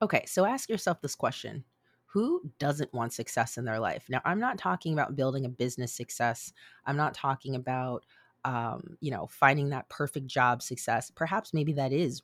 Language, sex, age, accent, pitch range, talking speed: English, female, 30-49, American, 130-150 Hz, 185 wpm